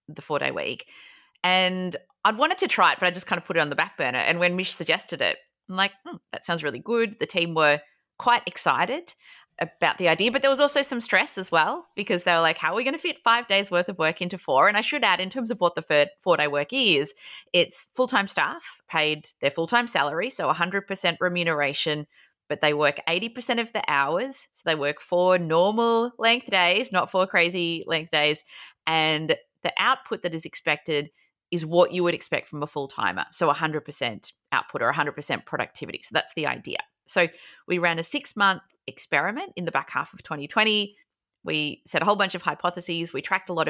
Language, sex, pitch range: English, female, 150-195 Hz